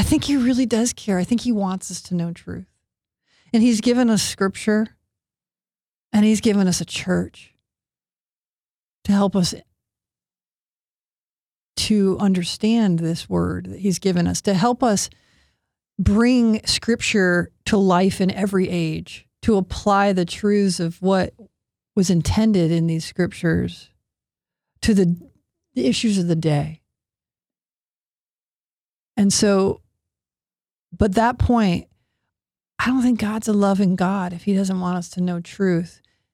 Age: 50-69